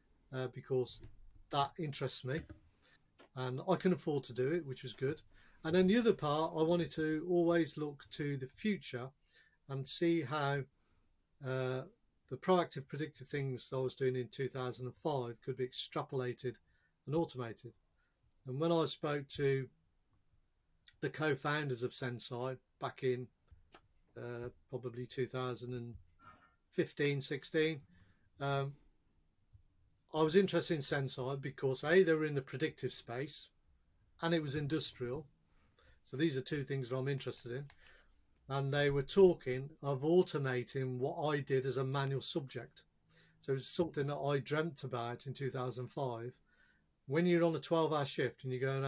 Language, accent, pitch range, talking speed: English, British, 125-150 Hz, 145 wpm